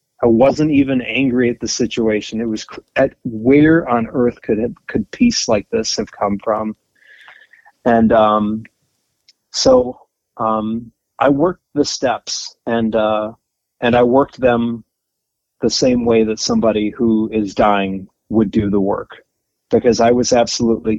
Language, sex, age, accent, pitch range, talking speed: English, male, 30-49, American, 110-125 Hz, 145 wpm